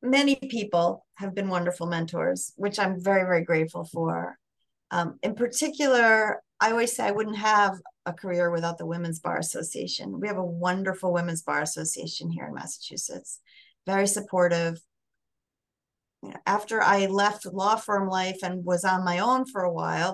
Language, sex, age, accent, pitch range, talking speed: English, female, 30-49, American, 170-200 Hz, 160 wpm